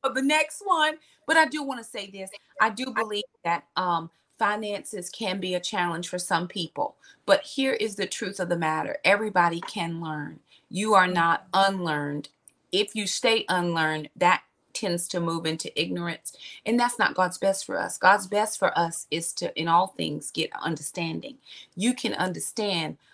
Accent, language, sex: American, English, female